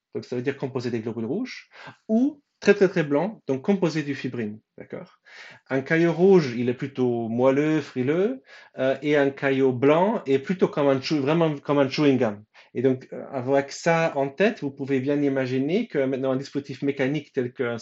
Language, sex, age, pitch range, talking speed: French, male, 30-49, 125-160 Hz, 190 wpm